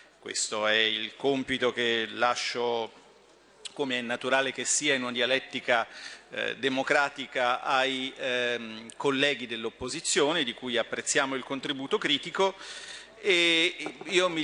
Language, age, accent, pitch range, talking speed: Italian, 40-59, native, 120-150 Hz, 110 wpm